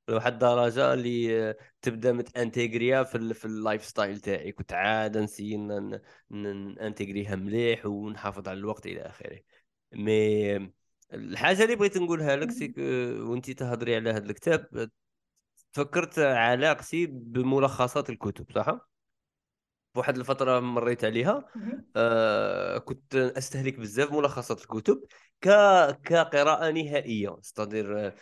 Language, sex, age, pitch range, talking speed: Arabic, male, 20-39, 115-160 Hz, 110 wpm